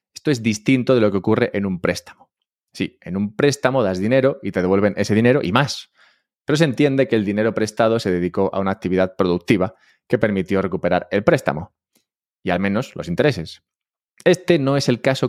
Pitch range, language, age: 100-145 Hz, Spanish, 20-39